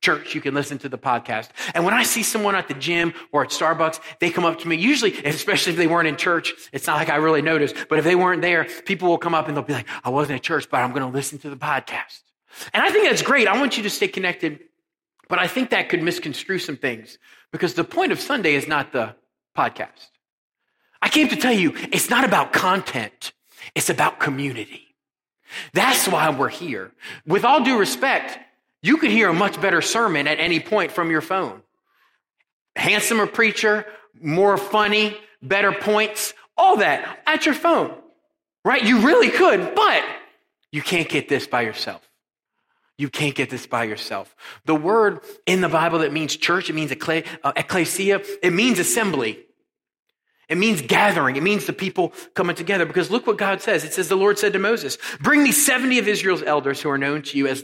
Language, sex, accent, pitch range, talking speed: English, male, American, 150-215 Hz, 205 wpm